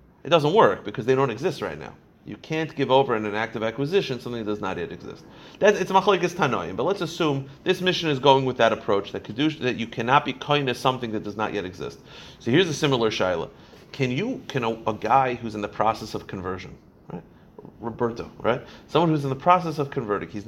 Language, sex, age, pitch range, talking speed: English, male, 30-49, 125-170 Hz, 230 wpm